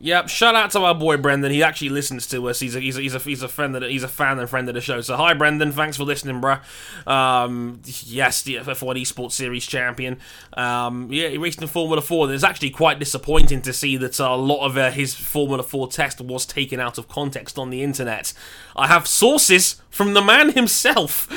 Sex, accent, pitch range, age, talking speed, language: male, British, 130-175 Hz, 20-39, 230 wpm, English